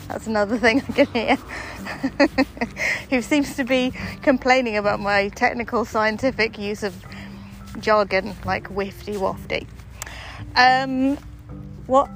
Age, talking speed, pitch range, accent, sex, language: 30-49, 120 wpm, 195-265 Hz, British, female, English